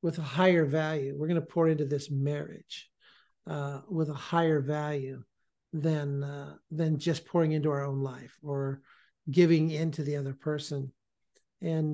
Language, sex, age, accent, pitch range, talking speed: English, male, 50-69, American, 145-170 Hz, 155 wpm